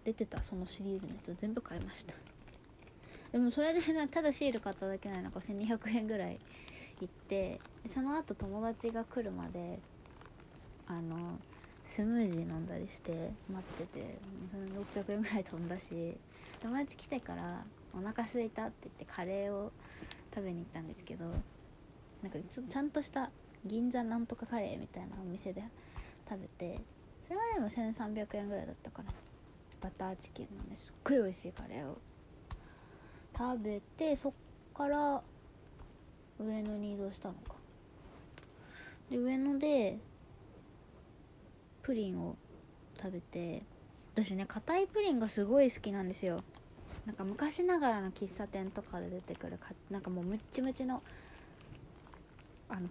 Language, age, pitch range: Japanese, 20-39, 185-240 Hz